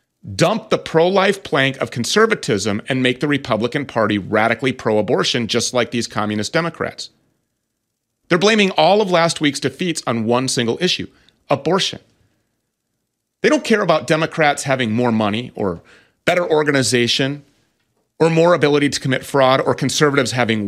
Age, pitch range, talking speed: 30-49, 125-185 Hz, 145 wpm